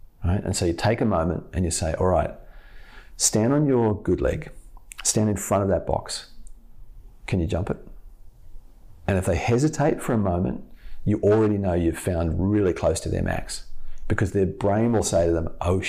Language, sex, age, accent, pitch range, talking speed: English, male, 40-59, Australian, 90-105 Hz, 195 wpm